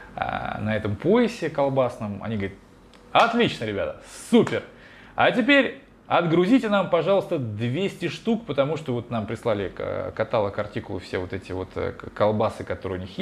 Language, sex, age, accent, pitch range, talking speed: Russian, male, 20-39, native, 110-160 Hz, 140 wpm